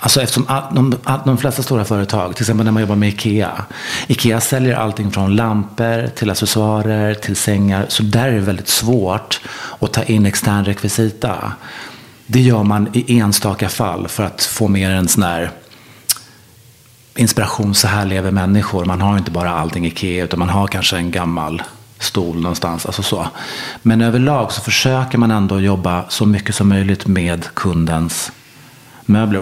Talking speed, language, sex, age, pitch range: 170 wpm, English, male, 30-49, 100-115 Hz